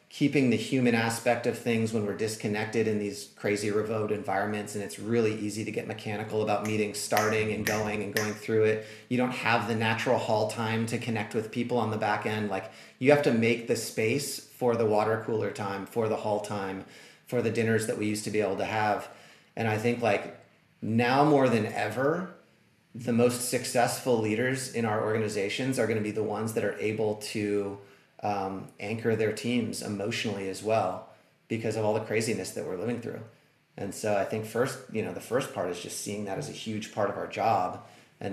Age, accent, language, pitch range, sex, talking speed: 30-49, American, English, 105-115 Hz, male, 210 wpm